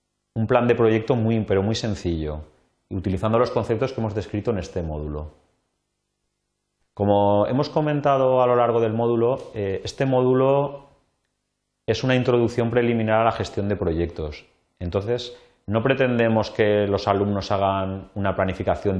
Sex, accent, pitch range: male, Spanish, 85-125 Hz